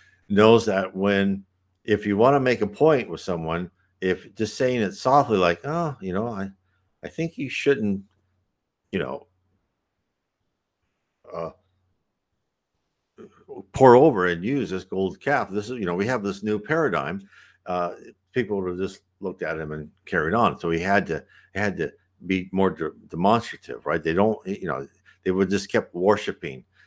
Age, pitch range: 60-79, 90-110 Hz